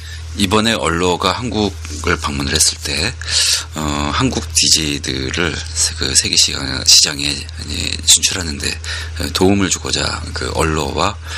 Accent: native